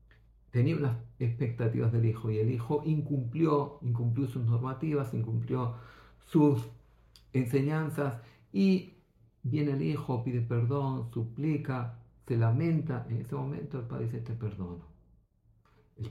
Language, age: Greek, 50-69